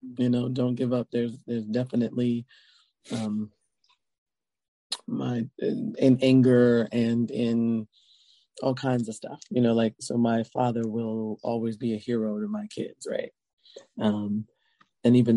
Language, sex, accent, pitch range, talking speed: English, male, American, 110-130 Hz, 145 wpm